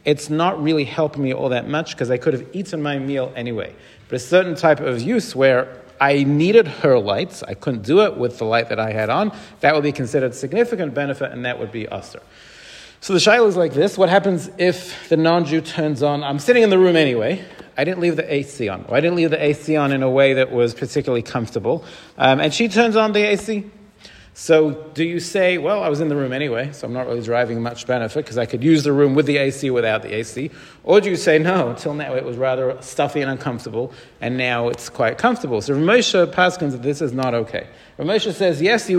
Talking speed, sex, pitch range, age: 240 wpm, male, 130-170 Hz, 40-59